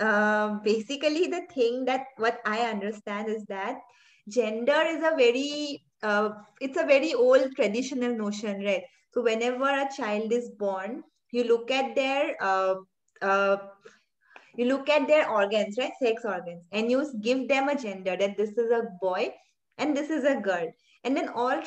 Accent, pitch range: Indian, 210-265 Hz